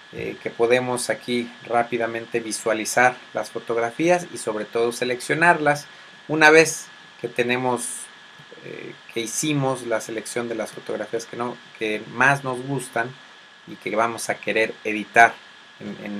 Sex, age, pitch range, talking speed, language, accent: male, 30-49, 115-135 Hz, 135 wpm, Spanish, Mexican